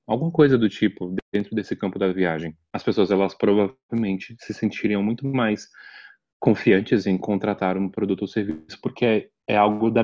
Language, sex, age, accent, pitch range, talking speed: Portuguese, male, 20-39, Brazilian, 100-125 Hz, 175 wpm